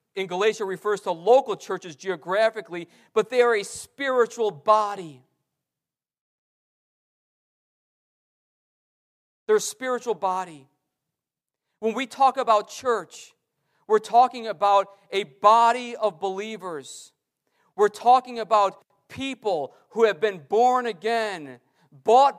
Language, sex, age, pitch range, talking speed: English, male, 50-69, 155-225 Hz, 105 wpm